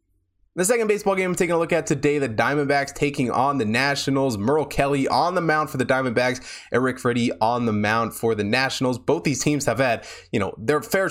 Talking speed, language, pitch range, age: 220 wpm, English, 110-145 Hz, 20-39